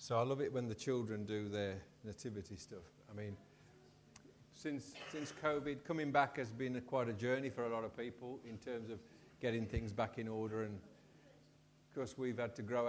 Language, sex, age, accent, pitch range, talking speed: English, male, 50-69, British, 115-145 Hz, 205 wpm